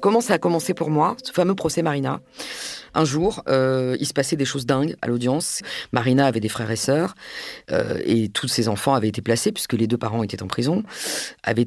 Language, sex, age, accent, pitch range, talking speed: French, female, 40-59, French, 125-165 Hz, 220 wpm